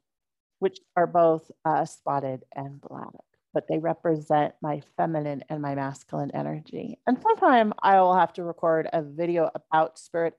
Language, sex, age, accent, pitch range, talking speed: English, female, 40-59, American, 165-220 Hz, 155 wpm